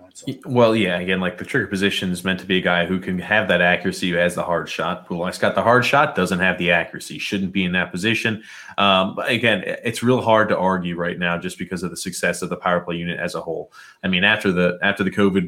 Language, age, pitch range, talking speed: English, 30-49, 90-105 Hz, 260 wpm